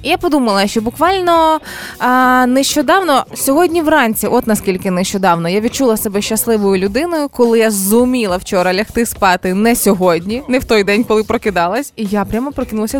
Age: 20-39